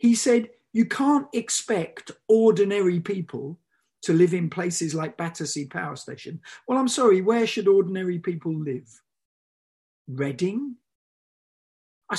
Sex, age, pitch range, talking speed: male, 50-69, 140-205 Hz, 125 wpm